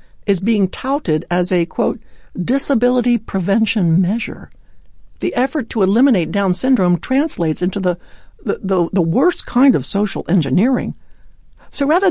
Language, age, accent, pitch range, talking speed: English, 60-79, American, 160-235 Hz, 130 wpm